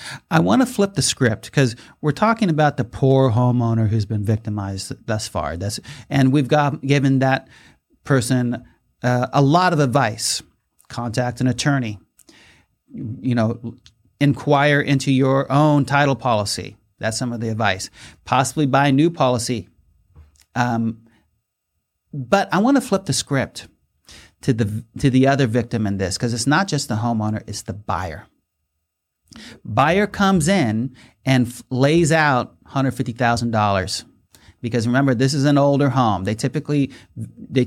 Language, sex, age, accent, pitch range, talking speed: English, male, 40-59, American, 115-140 Hz, 155 wpm